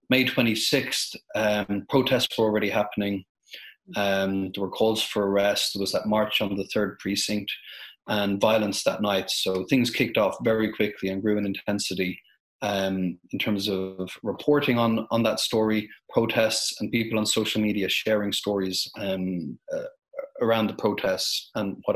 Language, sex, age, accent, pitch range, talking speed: English, male, 30-49, Irish, 105-120 Hz, 160 wpm